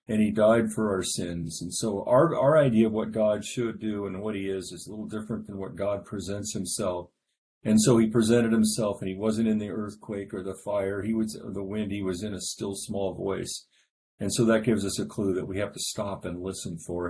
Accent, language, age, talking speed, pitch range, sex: American, English, 50-69, 245 wpm, 95-115 Hz, male